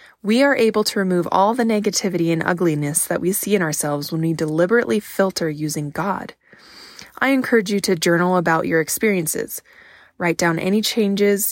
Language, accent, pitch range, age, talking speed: English, American, 170-215 Hz, 20-39, 170 wpm